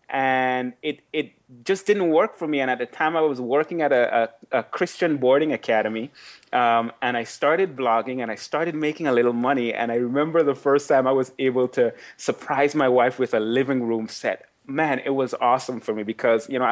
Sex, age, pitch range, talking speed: male, 30-49, 120-150 Hz, 220 wpm